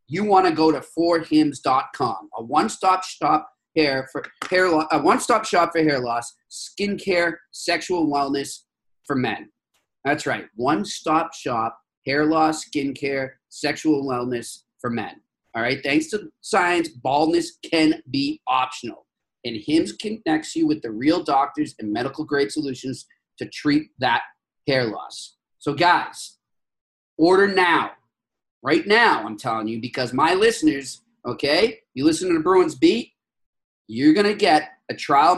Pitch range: 140-205 Hz